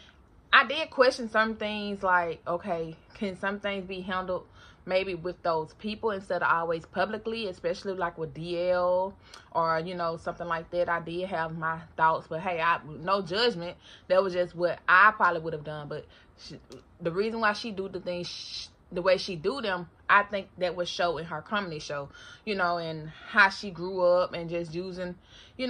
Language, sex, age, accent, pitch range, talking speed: English, female, 20-39, American, 170-215 Hz, 195 wpm